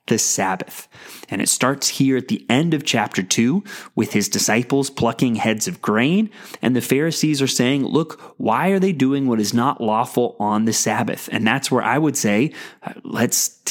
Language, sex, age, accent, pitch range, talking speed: English, male, 30-49, American, 125-190 Hz, 190 wpm